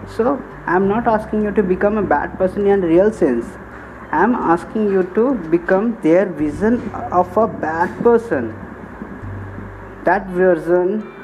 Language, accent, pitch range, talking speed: English, Indian, 175-210 Hz, 150 wpm